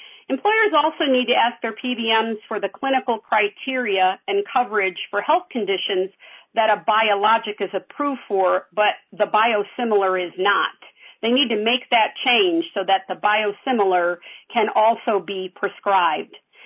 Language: English